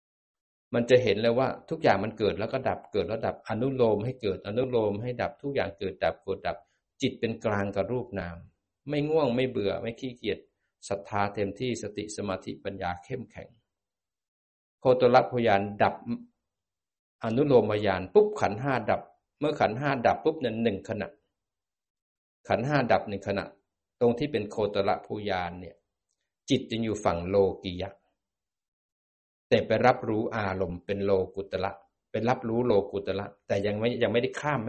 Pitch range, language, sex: 95-125 Hz, Thai, male